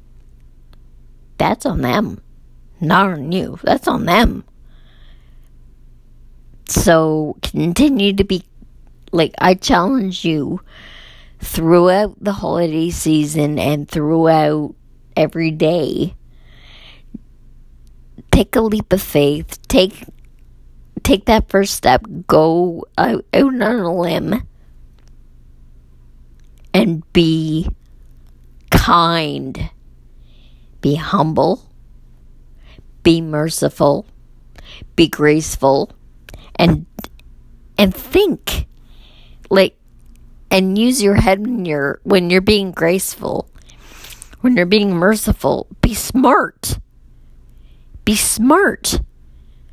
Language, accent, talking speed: English, American, 85 wpm